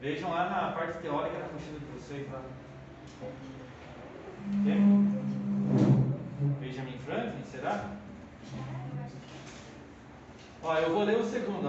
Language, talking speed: Portuguese, 105 wpm